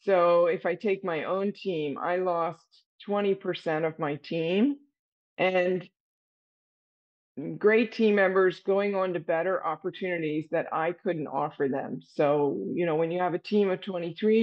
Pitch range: 160-190 Hz